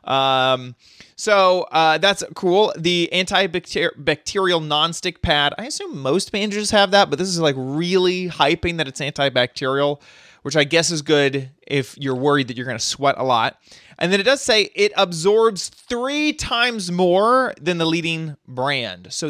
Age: 20-39